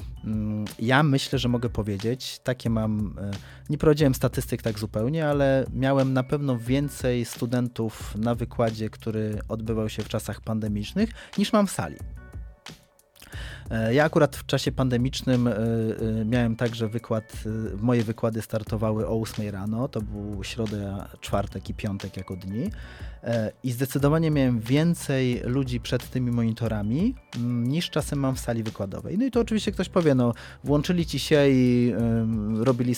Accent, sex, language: native, male, Polish